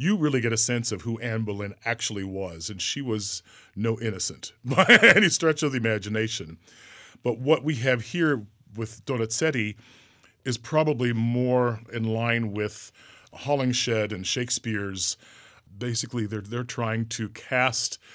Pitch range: 110-125 Hz